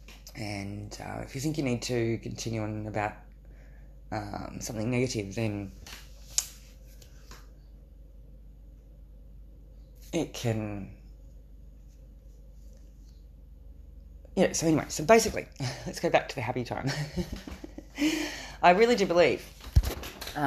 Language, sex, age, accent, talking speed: English, female, 20-39, Australian, 100 wpm